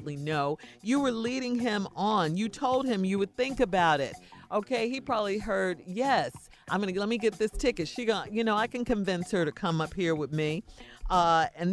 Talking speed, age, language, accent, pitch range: 220 wpm, 40-59, English, American, 165-230 Hz